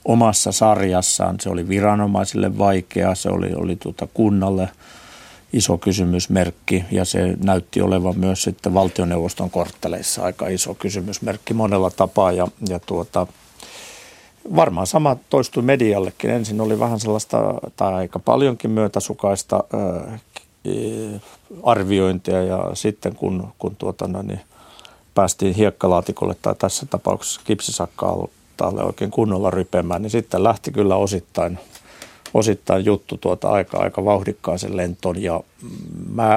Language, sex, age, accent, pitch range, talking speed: Finnish, male, 60-79, native, 90-105 Hz, 120 wpm